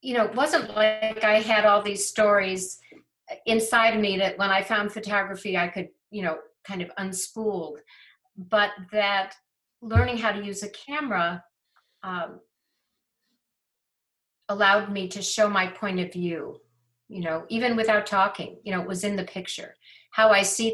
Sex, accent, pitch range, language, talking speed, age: female, American, 170-215 Hz, English, 165 wpm, 50-69